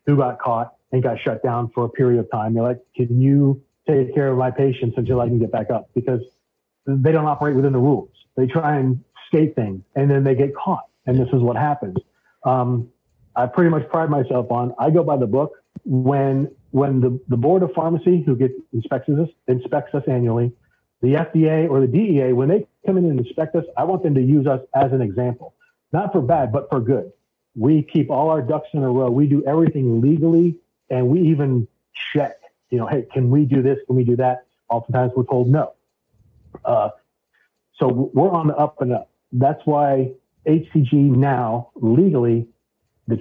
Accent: American